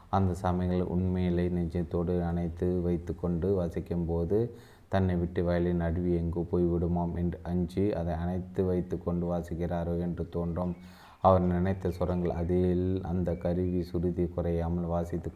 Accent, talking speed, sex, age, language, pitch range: native, 130 wpm, male, 30-49, Tamil, 85-90 Hz